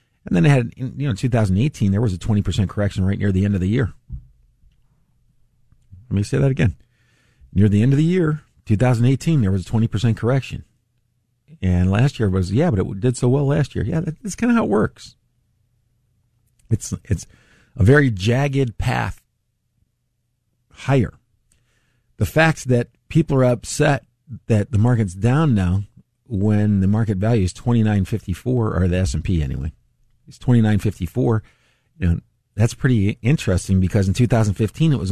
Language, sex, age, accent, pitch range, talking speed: English, male, 50-69, American, 105-130 Hz, 180 wpm